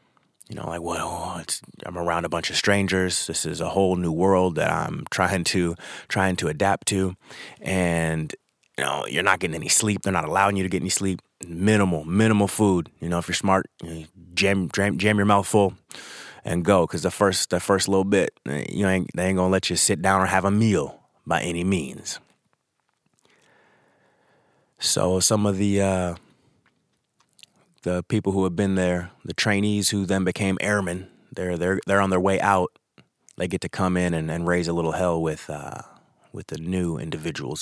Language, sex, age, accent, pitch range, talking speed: English, male, 30-49, American, 85-100 Hz, 200 wpm